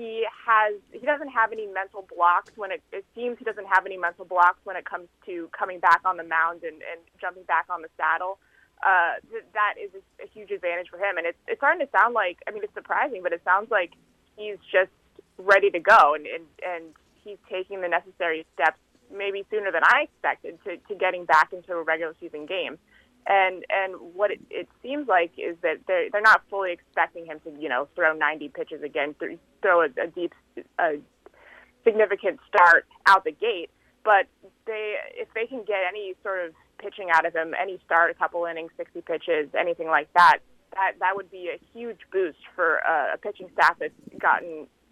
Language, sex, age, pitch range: English, female, 20-39, 175-245 Hz